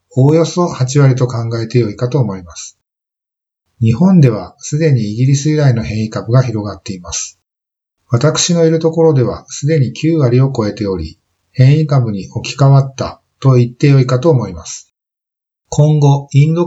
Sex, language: male, Japanese